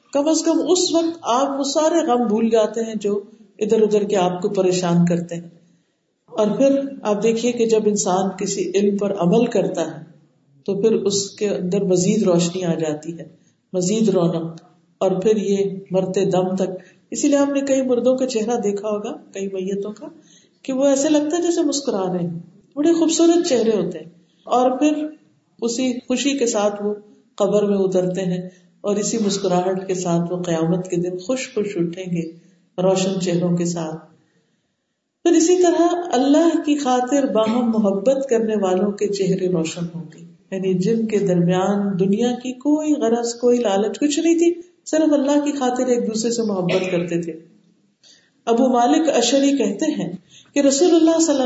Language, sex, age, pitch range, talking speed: Urdu, female, 50-69, 185-255 Hz, 175 wpm